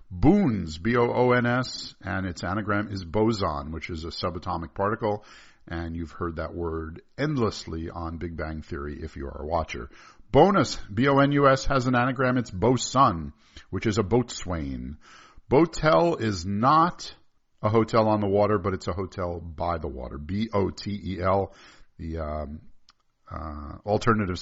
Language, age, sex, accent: English, 50-69, male, American